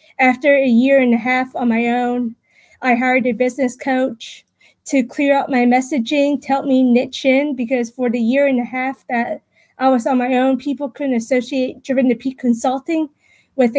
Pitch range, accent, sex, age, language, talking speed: 240-270 Hz, American, female, 20-39, English, 195 wpm